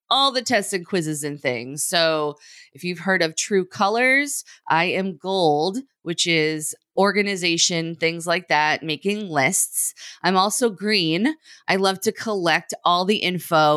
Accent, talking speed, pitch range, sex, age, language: American, 155 wpm, 155-200 Hz, female, 30-49, English